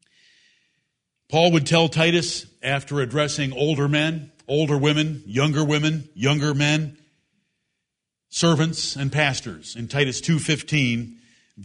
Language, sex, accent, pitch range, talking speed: English, male, American, 130-160 Hz, 105 wpm